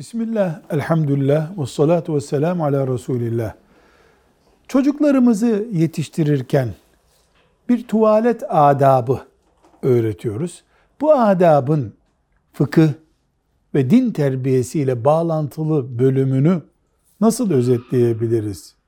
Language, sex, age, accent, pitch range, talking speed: Turkish, male, 60-79, native, 130-190 Hz, 75 wpm